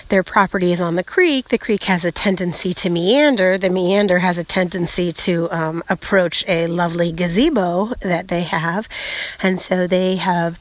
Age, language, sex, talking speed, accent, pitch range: 30-49, English, female, 175 wpm, American, 170-195 Hz